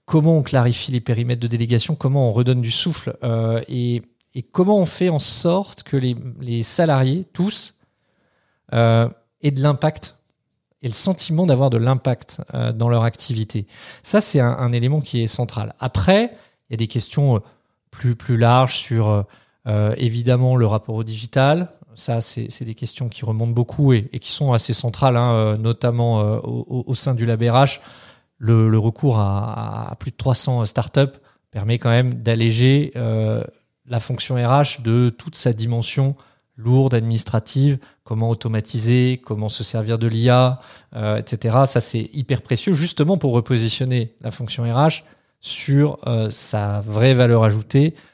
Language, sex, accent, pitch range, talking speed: French, male, French, 115-135 Hz, 165 wpm